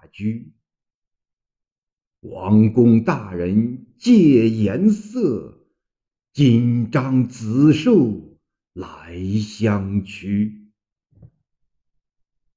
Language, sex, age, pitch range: Chinese, male, 50-69, 100-160 Hz